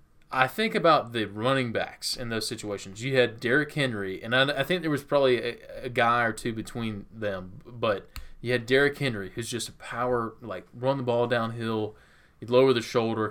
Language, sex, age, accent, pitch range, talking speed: English, male, 20-39, American, 110-130 Hz, 205 wpm